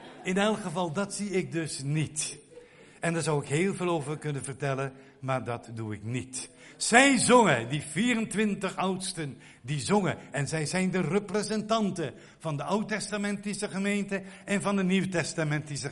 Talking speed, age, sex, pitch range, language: 160 wpm, 60-79, male, 145-200 Hz, Dutch